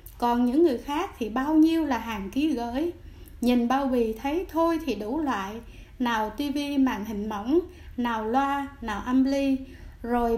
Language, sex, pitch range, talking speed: Vietnamese, female, 230-300 Hz, 175 wpm